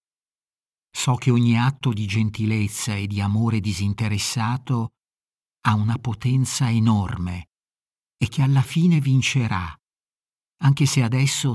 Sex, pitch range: male, 105-130 Hz